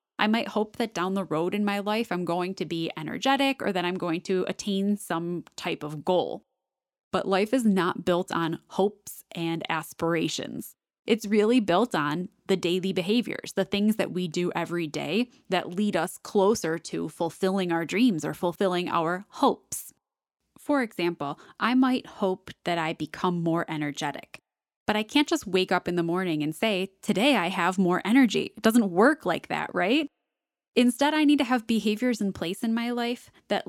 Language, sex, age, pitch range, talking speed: English, female, 10-29, 170-230 Hz, 185 wpm